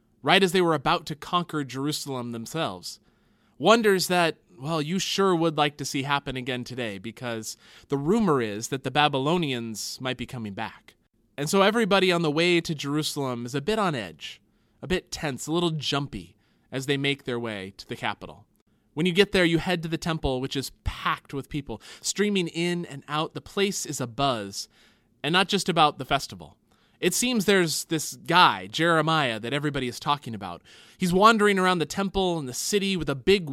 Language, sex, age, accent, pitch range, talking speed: English, male, 20-39, American, 130-180 Hz, 195 wpm